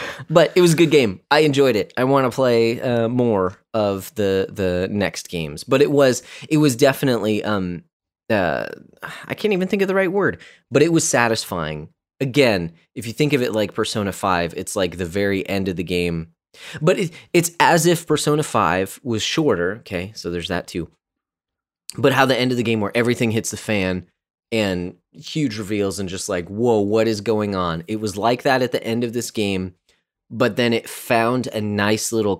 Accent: American